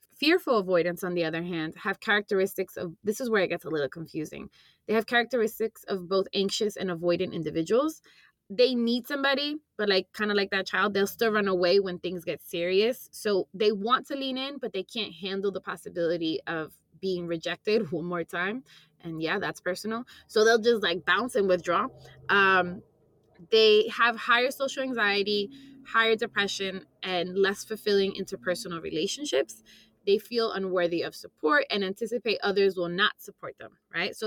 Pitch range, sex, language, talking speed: 180-230 Hz, female, English, 175 wpm